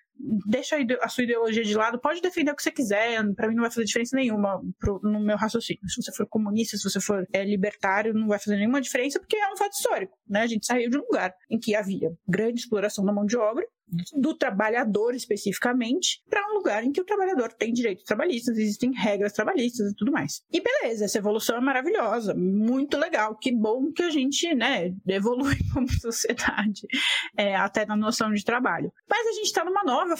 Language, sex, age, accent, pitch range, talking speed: Portuguese, female, 20-39, Brazilian, 210-280 Hz, 210 wpm